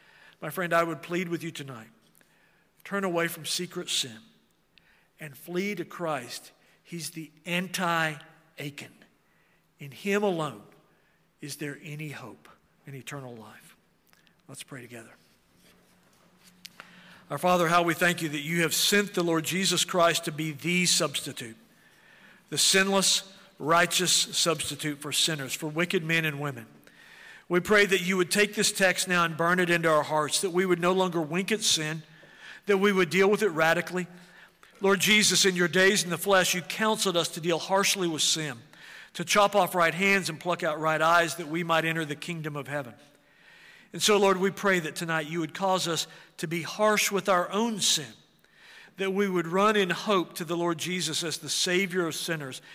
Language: English